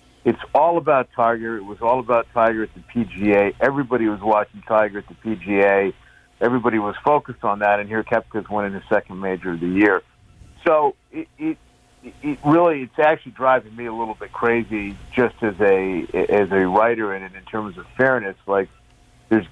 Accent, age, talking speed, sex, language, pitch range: American, 50-69, 185 wpm, male, English, 95-120 Hz